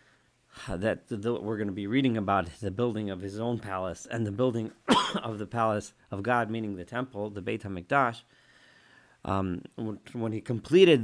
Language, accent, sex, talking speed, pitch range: English, American, male, 170 wpm, 105-130 Hz